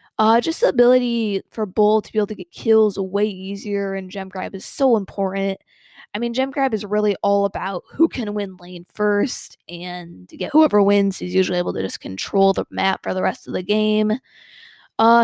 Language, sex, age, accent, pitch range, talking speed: English, female, 20-39, American, 195-235 Hz, 210 wpm